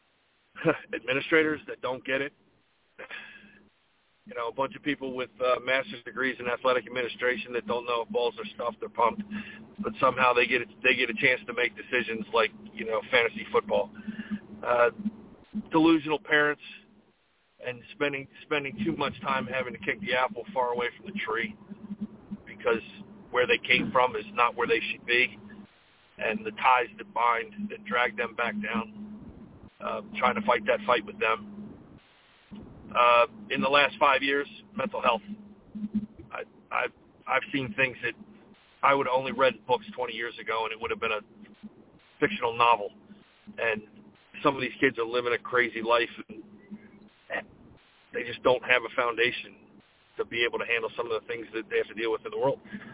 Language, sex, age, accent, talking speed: English, male, 40-59, American, 180 wpm